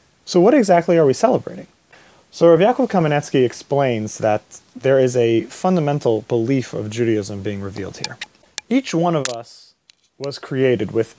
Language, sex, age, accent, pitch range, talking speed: English, male, 30-49, American, 120-170 Hz, 155 wpm